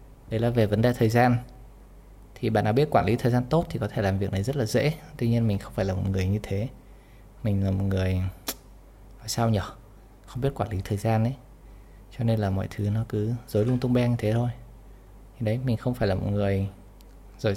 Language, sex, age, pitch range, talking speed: Vietnamese, male, 20-39, 100-120 Hz, 245 wpm